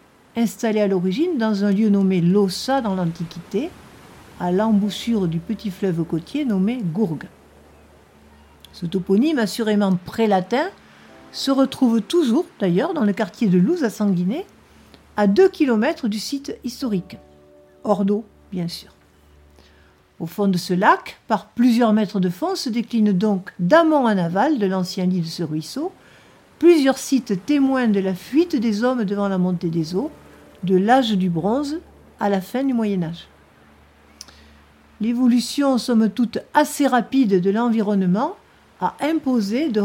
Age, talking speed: 50-69, 145 wpm